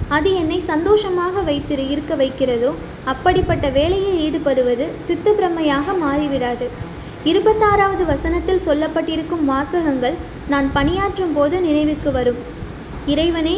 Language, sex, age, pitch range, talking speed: Tamil, female, 20-39, 285-360 Hz, 95 wpm